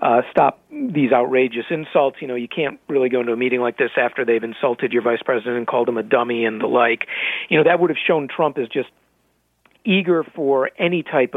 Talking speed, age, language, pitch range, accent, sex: 225 wpm, 40-59, English, 130-160 Hz, American, male